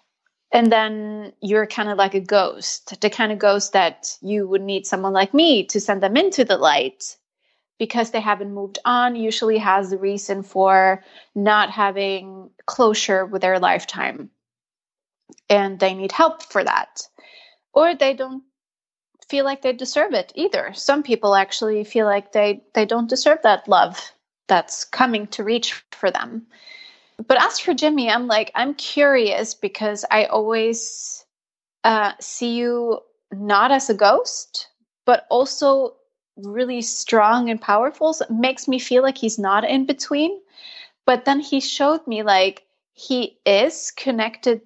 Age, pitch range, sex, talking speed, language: 20-39, 205-265 Hz, female, 155 wpm, English